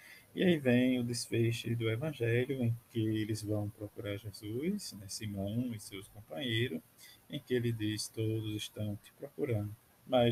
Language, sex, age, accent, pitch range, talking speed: Portuguese, male, 20-39, Brazilian, 100-115 Hz, 165 wpm